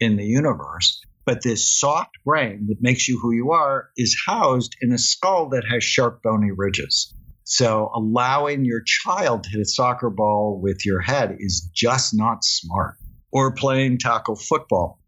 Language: English